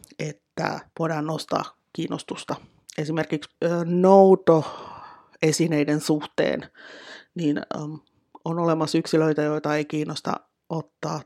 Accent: native